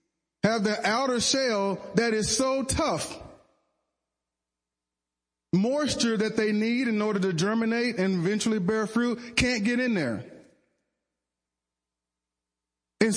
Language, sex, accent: English, male, American